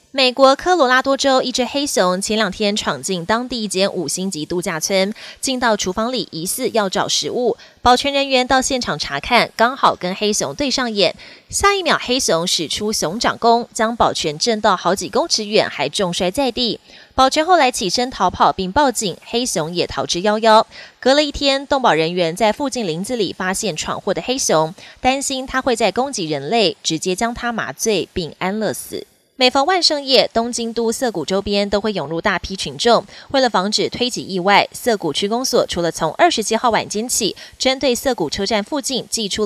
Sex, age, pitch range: female, 20-39, 185-255 Hz